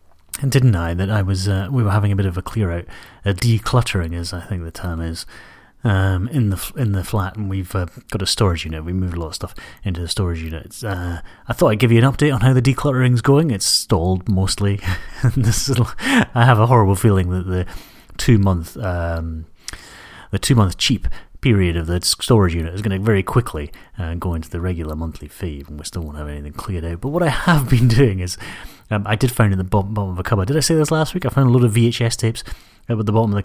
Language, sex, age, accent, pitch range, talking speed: English, male, 30-49, British, 90-120 Hz, 265 wpm